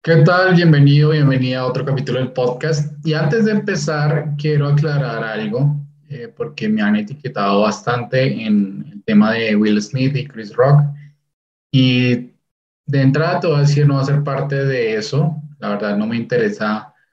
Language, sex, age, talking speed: Spanish, male, 20-39, 170 wpm